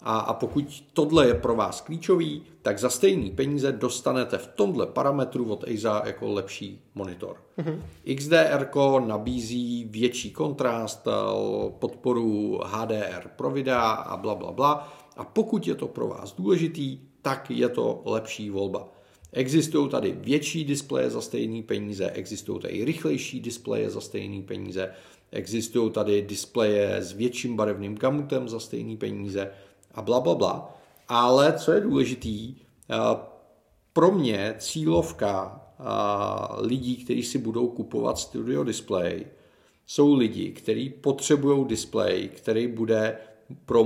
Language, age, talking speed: Czech, 40-59, 130 wpm